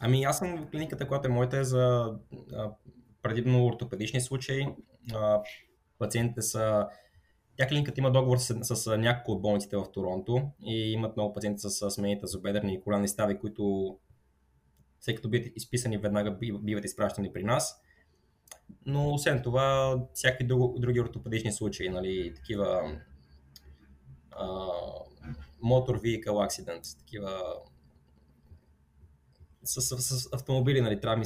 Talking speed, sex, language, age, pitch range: 130 wpm, male, Bulgarian, 20-39, 95-130 Hz